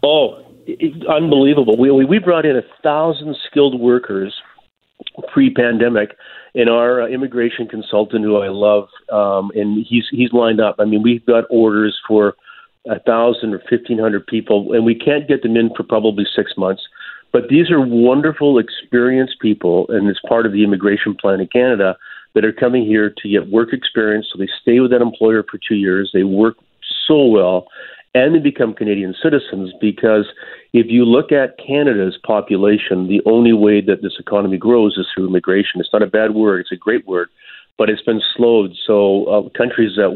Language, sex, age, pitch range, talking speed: English, male, 40-59, 100-120 Hz, 180 wpm